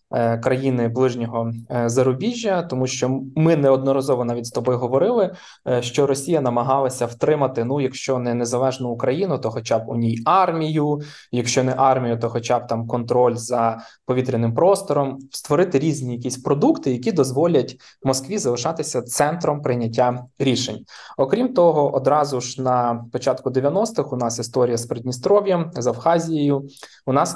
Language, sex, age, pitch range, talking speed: Ukrainian, male, 20-39, 120-145 Hz, 145 wpm